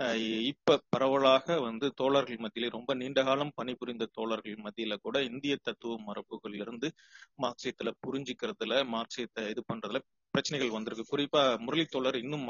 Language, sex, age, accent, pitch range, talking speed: Tamil, male, 30-49, native, 115-140 Hz, 120 wpm